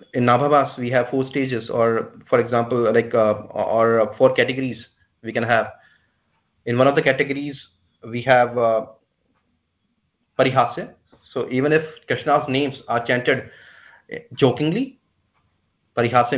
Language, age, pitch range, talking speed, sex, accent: English, 30-49, 115-145 Hz, 130 wpm, male, Indian